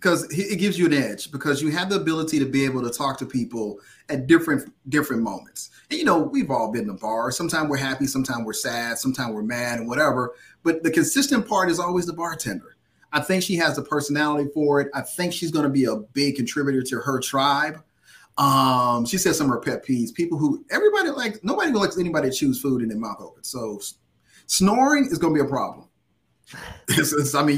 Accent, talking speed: American, 220 wpm